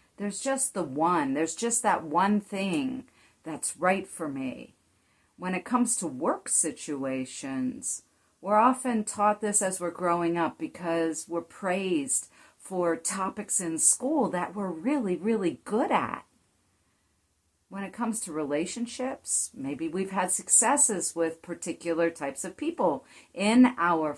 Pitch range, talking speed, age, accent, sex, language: 160-225 Hz, 140 wpm, 50-69, American, female, English